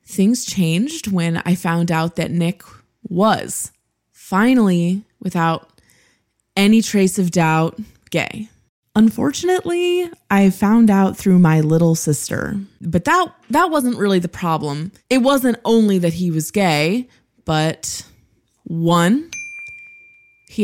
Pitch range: 165-225 Hz